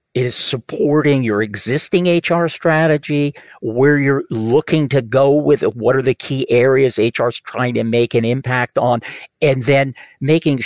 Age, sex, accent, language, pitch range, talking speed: 50-69, male, American, English, 115-140 Hz, 165 wpm